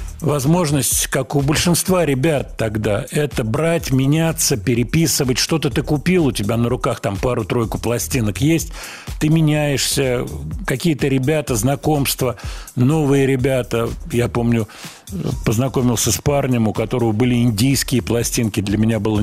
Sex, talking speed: male, 130 wpm